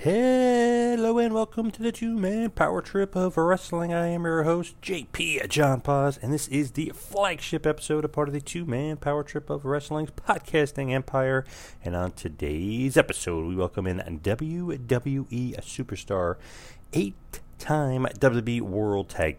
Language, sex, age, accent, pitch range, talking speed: English, male, 30-49, American, 90-140 Hz, 145 wpm